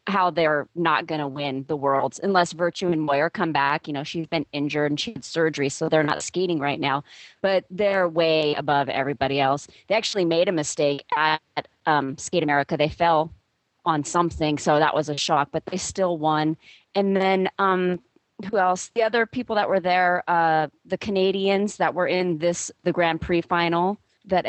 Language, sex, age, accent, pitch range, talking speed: English, female, 30-49, American, 155-195 Hz, 195 wpm